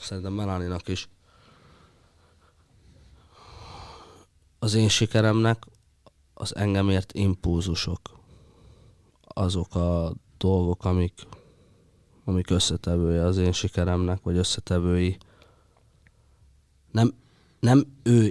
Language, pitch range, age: Hungarian, 90-105 Hz, 20-39